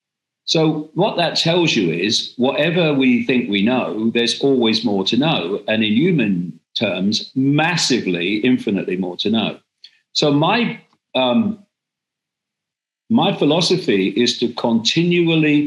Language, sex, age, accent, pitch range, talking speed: English, male, 50-69, British, 105-150 Hz, 125 wpm